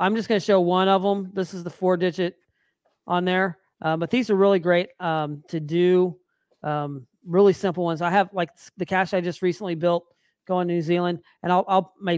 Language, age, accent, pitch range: English, 40-59, American, 165-190 Hz